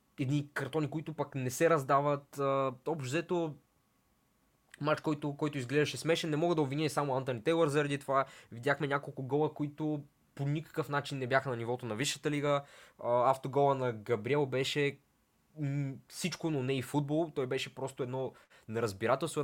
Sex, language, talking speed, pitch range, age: male, Bulgarian, 160 wpm, 120-145 Hz, 20-39